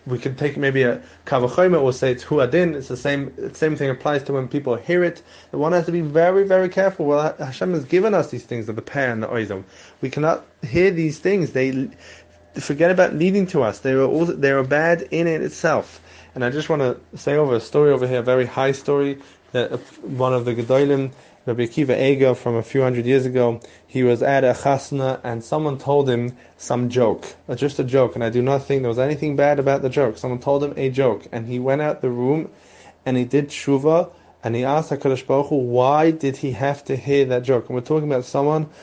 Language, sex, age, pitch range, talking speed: English, male, 20-39, 125-150 Hz, 235 wpm